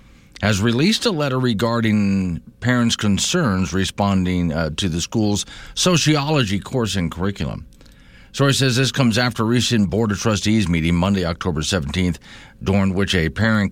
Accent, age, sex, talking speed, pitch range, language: American, 50-69, male, 150 wpm, 85-110 Hz, English